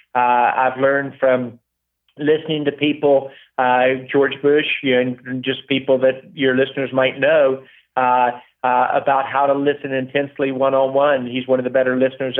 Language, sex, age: English, male, 40-59